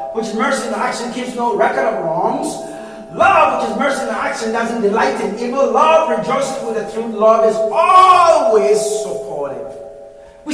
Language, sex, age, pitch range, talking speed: English, male, 40-59, 290-345 Hz, 165 wpm